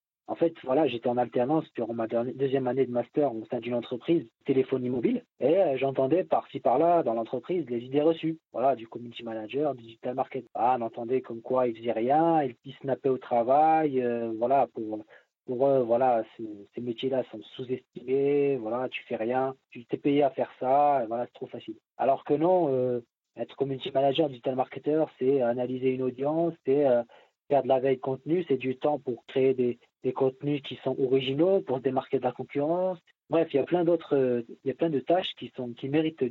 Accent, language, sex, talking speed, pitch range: French, French, male, 205 wpm, 120-150 Hz